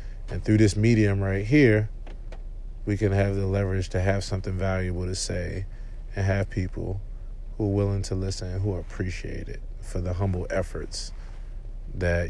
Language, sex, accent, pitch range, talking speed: English, male, American, 95-105 Hz, 165 wpm